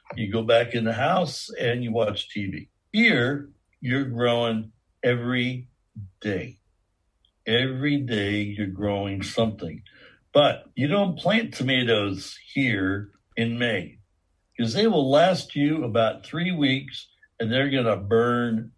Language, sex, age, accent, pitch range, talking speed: English, male, 60-79, American, 100-125 Hz, 130 wpm